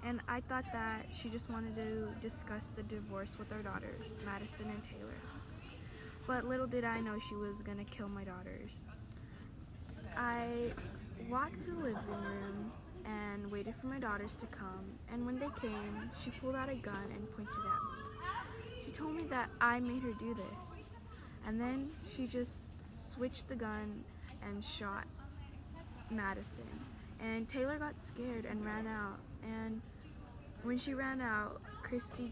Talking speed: 160 wpm